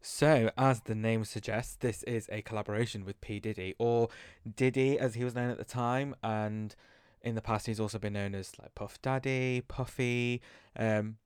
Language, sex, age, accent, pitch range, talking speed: English, male, 20-39, British, 100-115 Hz, 185 wpm